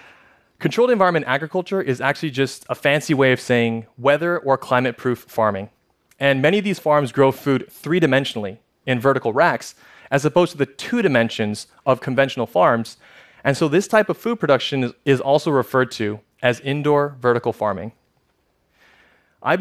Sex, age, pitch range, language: male, 30-49, 125-155 Hz, Korean